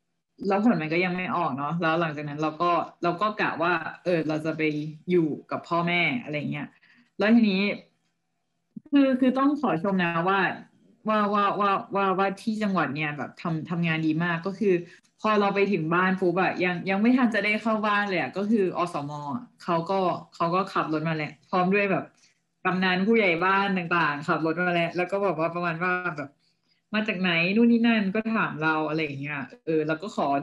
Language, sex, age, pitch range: Thai, female, 20-39, 160-200 Hz